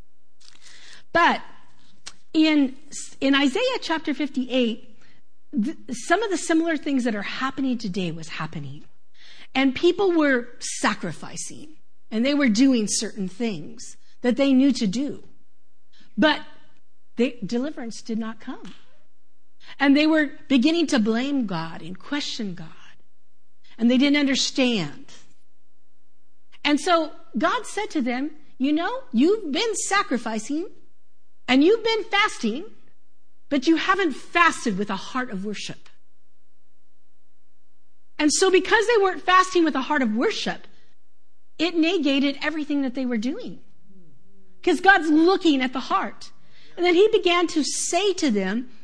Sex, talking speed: female, 135 wpm